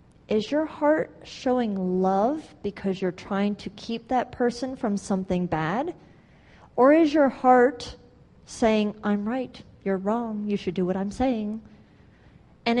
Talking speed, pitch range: 145 wpm, 185-250 Hz